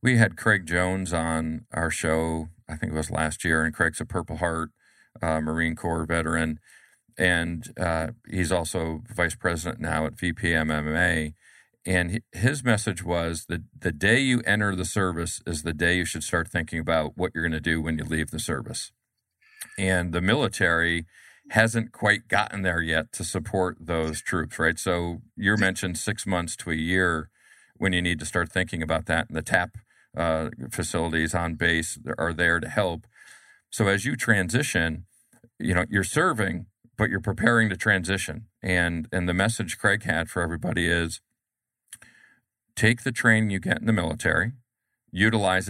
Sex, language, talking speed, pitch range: male, English, 175 wpm, 80-105 Hz